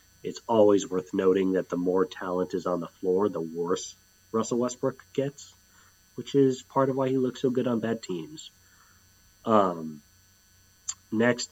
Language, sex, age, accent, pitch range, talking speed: English, male, 30-49, American, 90-120 Hz, 160 wpm